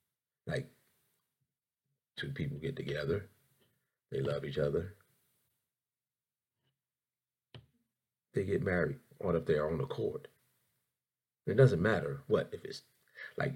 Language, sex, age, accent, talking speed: English, male, 40-59, American, 125 wpm